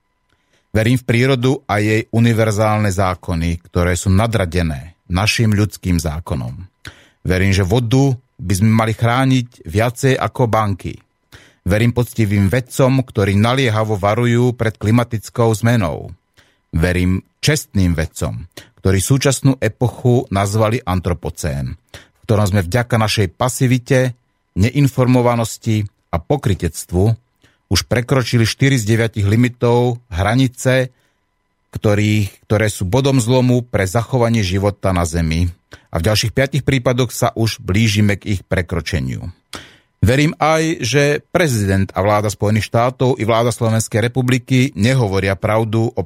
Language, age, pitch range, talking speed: Slovak, 30-49, 100-125 Hz, 120 wpm